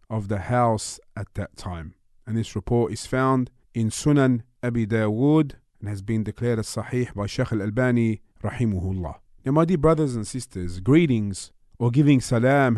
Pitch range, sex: 110-140 Hz, male